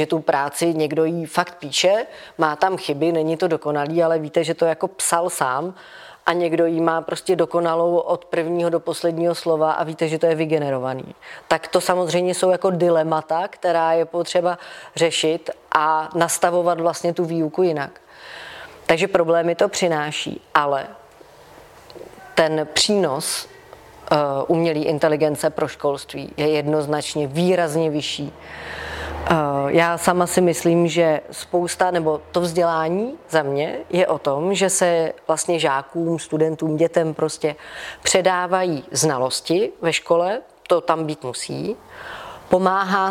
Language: Czech